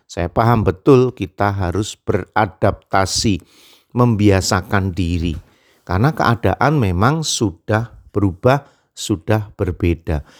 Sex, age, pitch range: male, 50-69, 100-130 Hz